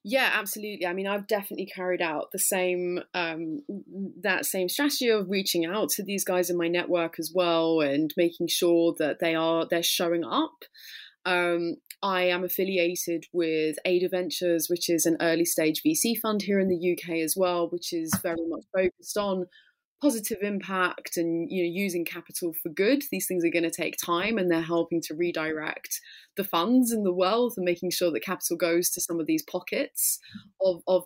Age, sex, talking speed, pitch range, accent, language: 20-39, female, 190 wpm, 165-190 Hz, British, English